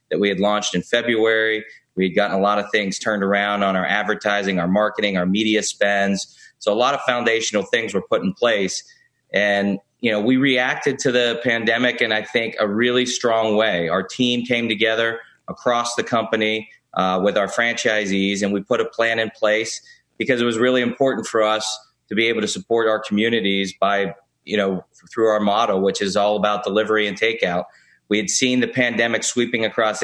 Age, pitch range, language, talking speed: 30-49, 100-115 Hz, English, 200 wpm